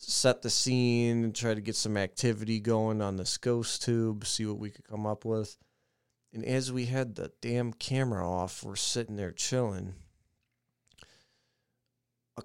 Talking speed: 165 wpm